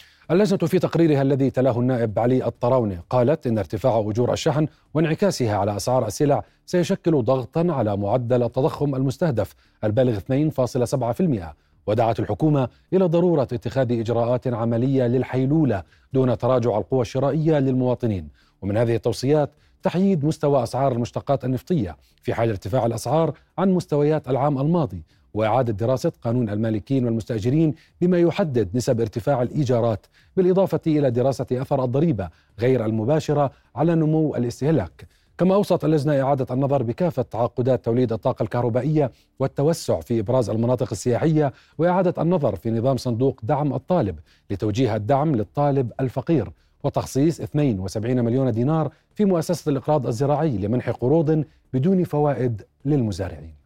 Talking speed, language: 125 wpm, Arabic